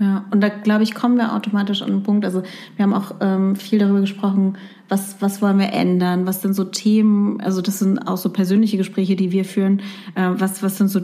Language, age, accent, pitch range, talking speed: German, 30-49, German, 180-205 Hz, 235 wpm